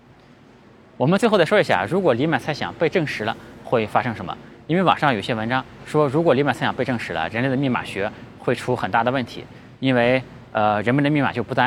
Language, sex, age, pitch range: Chinese, male, 20-39, 105-135 Hz